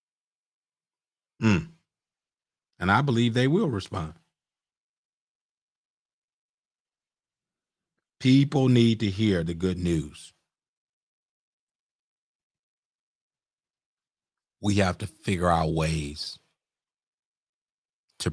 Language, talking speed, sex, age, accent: English, 70 wpm, male, 50-69, American